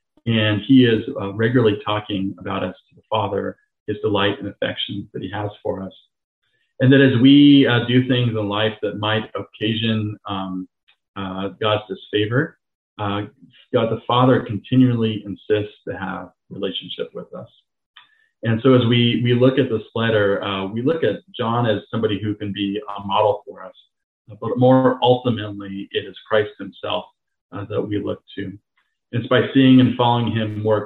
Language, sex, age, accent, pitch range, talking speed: English, male, 40-59, American, 105-125 Hz, 175 wpm